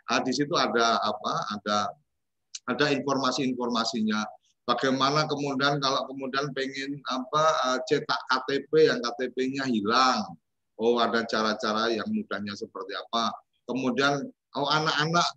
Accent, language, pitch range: native, Indonesian, 115-150 Hz